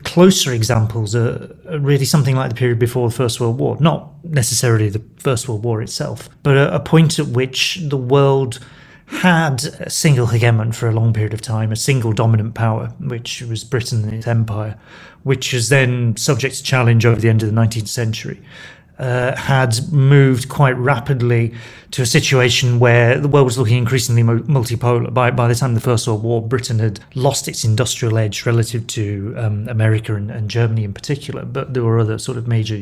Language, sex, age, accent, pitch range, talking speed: English, male, 30-49, British, 115-140 Hz, 195 wpm